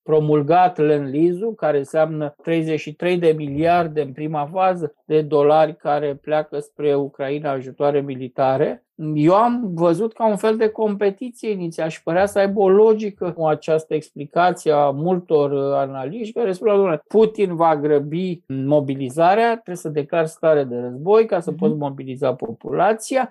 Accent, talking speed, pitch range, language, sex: native, 145 wpm, 155-195 Hz, Romanian, male